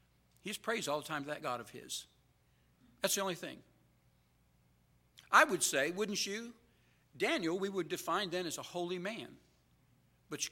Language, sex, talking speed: English, male, 170 wpm